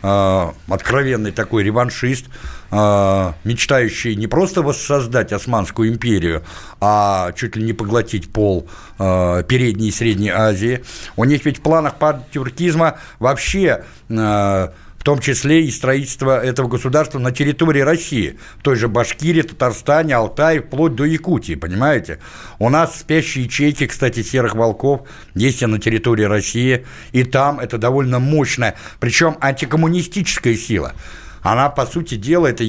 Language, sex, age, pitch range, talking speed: Russian, male, 60-79, 110-145 Hz, 125 wpm